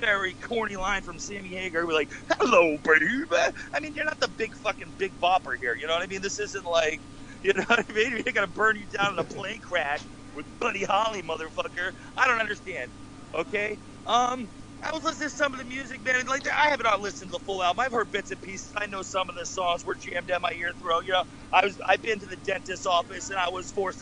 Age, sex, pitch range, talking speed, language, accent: 40-59, male, 195-265 Hz, 250 wpm, English, American